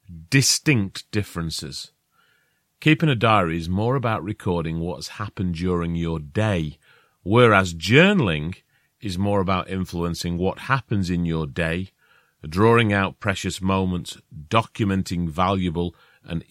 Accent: British